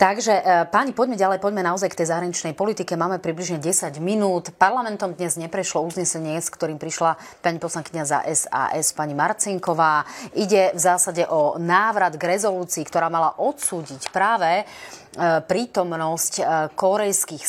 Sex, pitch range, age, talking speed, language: female, 160-195 Hz, 30-49, 135 wpm, Slovak